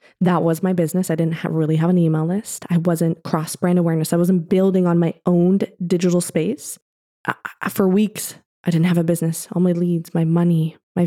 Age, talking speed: 20-39, 215 wpm